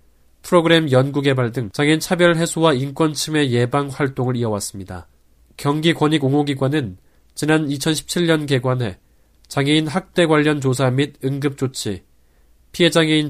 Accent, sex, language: native, male, Korean